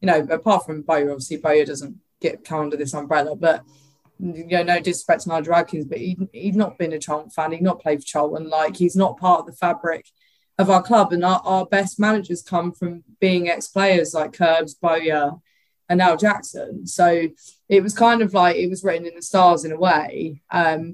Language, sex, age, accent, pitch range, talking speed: English, female, 20-39, British, 160-195 Hz, 220 wpm